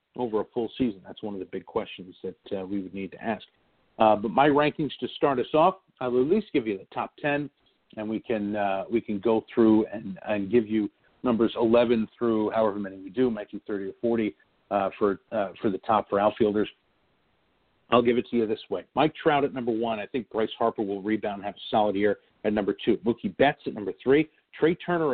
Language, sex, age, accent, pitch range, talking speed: English, male, 50-69, American, 105-135 Hz, 235 wpm